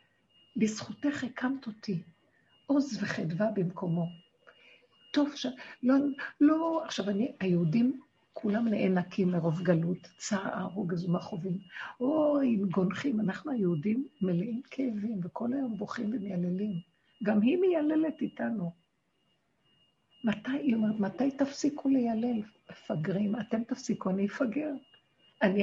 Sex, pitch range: female, 180-270 Hz